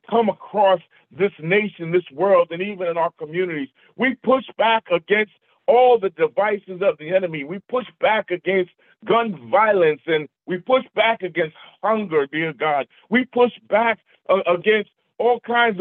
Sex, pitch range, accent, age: male, 170-225 Hz, American, 50-69